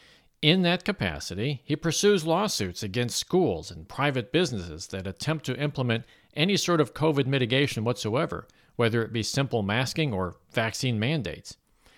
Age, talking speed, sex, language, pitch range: 50-69, 145 wpm, male, English, 105-140 Hz